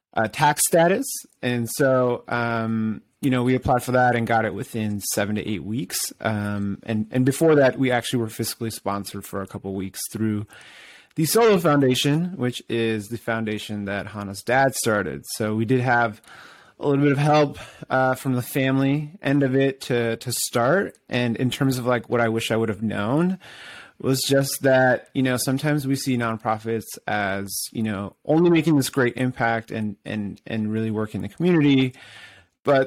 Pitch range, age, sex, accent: 110-140 Hz, 30-49, male, American